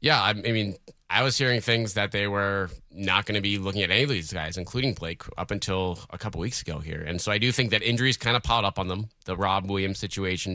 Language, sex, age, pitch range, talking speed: English, male, 20-39, 90-105 Hz, 265 wpm